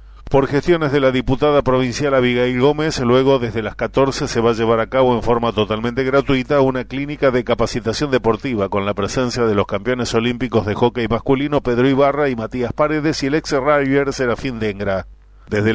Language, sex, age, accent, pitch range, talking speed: Spanish, male, 40-59, Argentinian, 115-135 Hz, 185 wpm